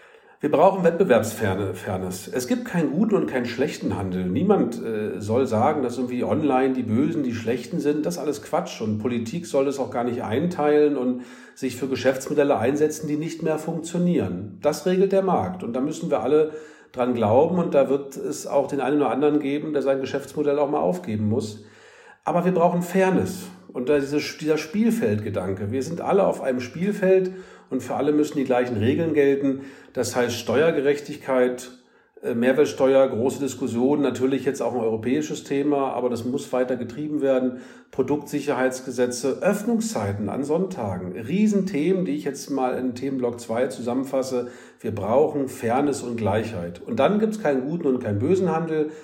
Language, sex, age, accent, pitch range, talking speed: German, male, 50-69, German, 120-155 Hz, 170 wpm